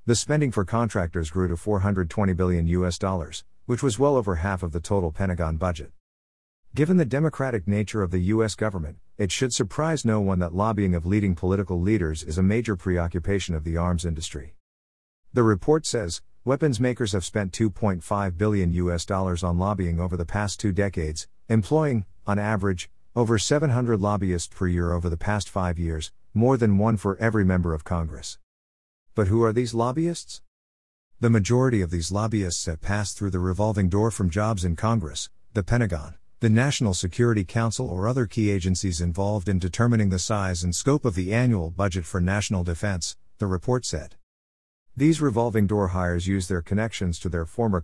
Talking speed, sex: 180 wpm, male